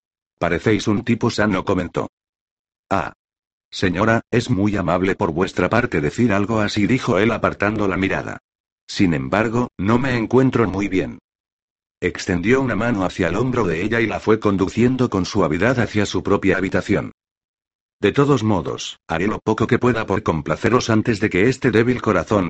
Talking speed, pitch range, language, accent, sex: 165 wpm, 90-115 Hz, Spanish, Spanish, male